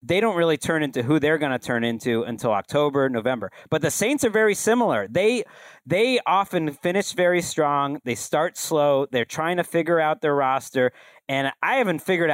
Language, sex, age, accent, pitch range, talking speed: English, male, 40-59, American, 135-175 Hz, 195 wpm